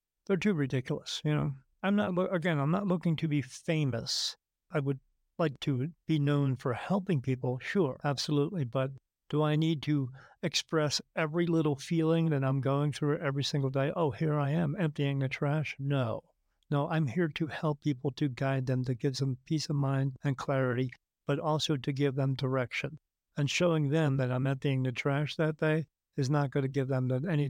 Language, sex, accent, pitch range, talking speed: English, male, American, 135-155 Hz, 195 wpm